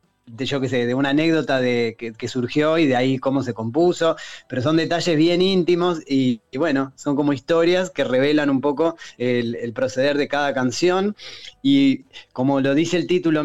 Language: Spanish